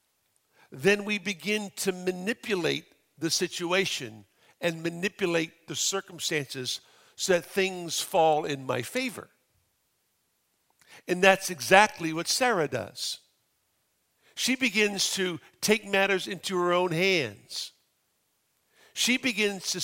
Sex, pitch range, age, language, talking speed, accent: male, 165-205 Hz, 50-69, English, 110 wpm, American